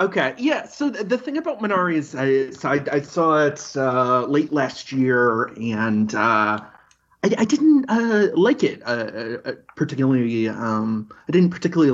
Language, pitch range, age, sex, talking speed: English, 110-160 Hz, 30-49, male, 170 wpm